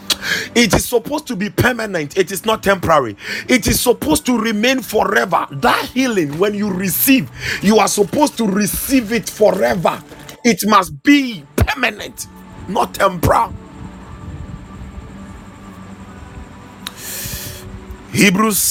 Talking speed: 110 wpm